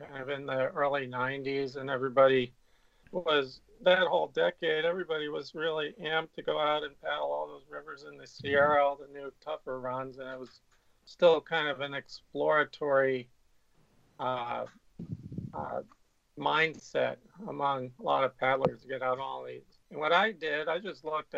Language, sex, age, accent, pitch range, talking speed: English, male, 40-59, American, 135-160 Hz, 170 wpm